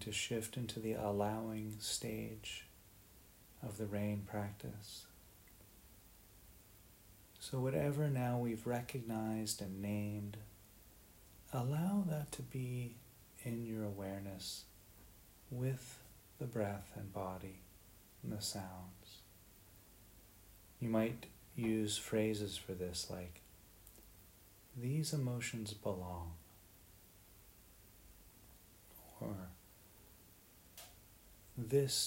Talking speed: 80 wpm